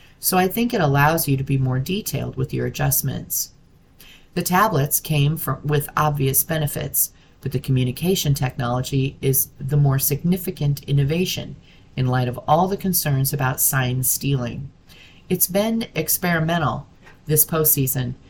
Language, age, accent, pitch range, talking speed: English, 40-59, American, 130-170 Hz, 140 wpm